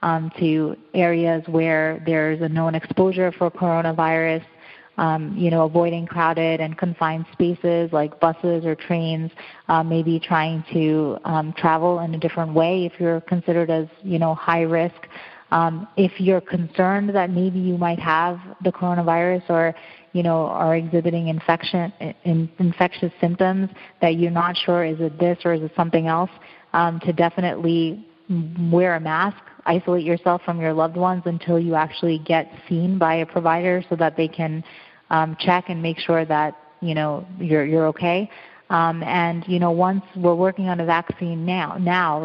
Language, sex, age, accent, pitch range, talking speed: English, female, 30-49, American, 160-175 Hz, 170 wpm